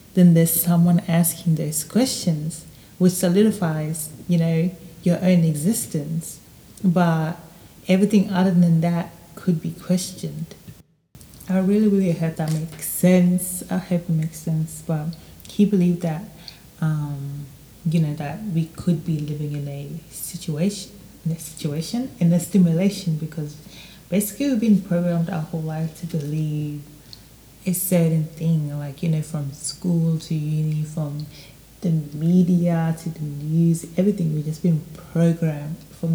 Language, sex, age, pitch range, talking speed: English, female, 30-49, 155-180 Hz, 145 wpm